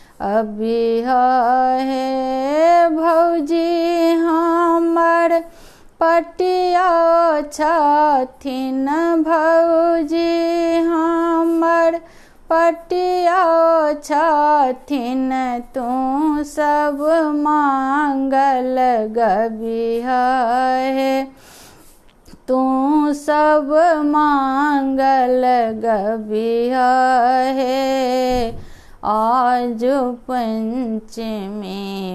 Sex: female